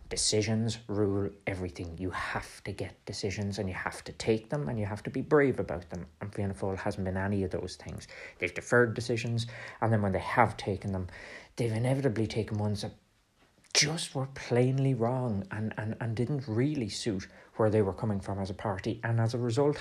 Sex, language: male, English